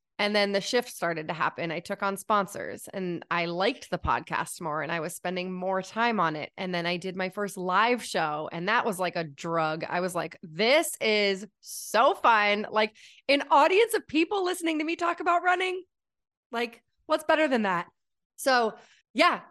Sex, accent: female, American